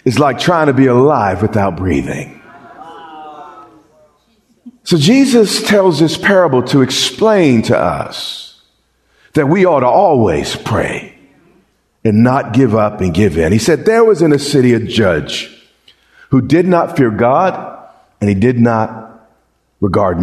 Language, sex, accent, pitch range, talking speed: English, male, American, 110-150 Hz, 145 wpm